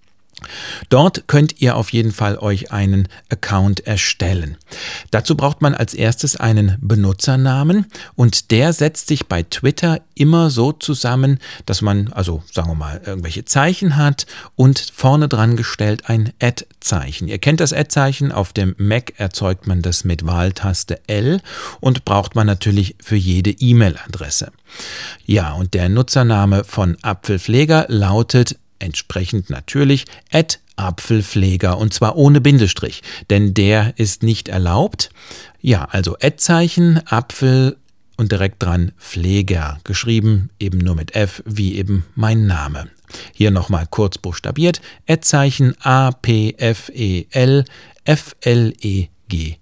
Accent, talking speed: German, 135 wpm